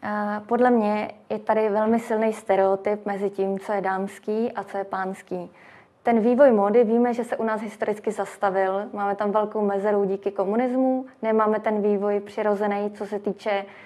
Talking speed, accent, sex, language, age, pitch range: 170 wpm, native, female, Czech, 20-39, 200-230 Hz